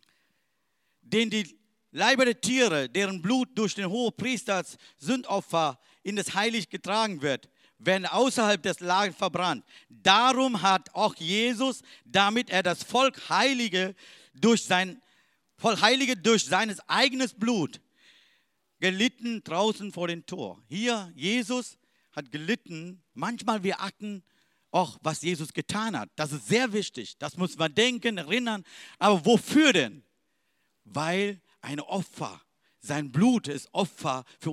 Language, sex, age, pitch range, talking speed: German, male, 50-69, 170-225 Hz, 135 wpm